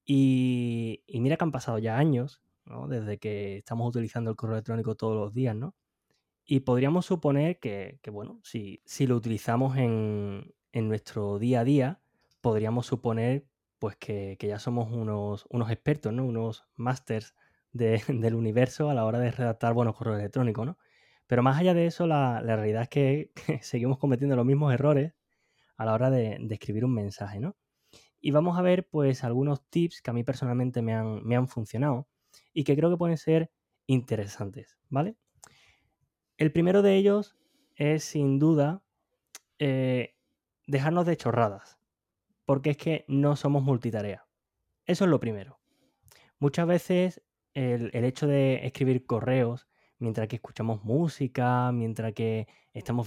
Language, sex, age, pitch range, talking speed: Spanish, male, 20-39, 115-145 Hz, 165 wpm